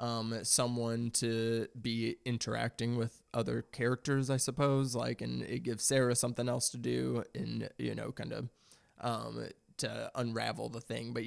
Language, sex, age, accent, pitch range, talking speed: English, male, 20-39, American, 115-125 Hz, 160 wpm